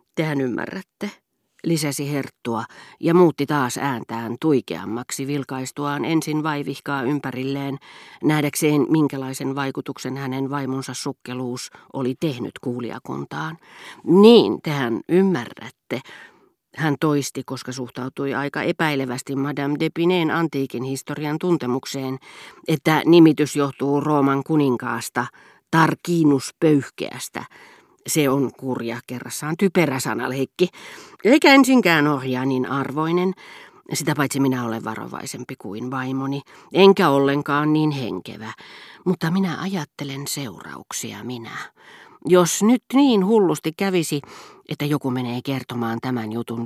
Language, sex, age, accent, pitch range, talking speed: Finnish, female, 40-59, native, 130-155 Hz, 105 wpm